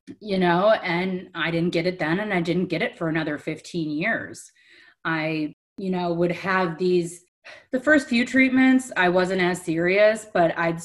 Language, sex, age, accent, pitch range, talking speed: English, female, 30-49, American, 170-215 Hz, 185 wpm